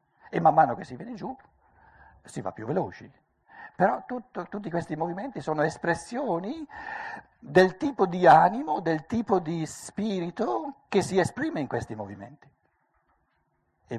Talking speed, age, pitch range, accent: 135 wpm, 60-79, 110-155 Hz, native